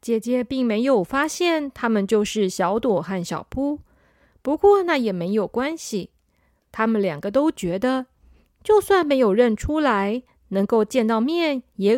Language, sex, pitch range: Chinese, female, 210-290 Hz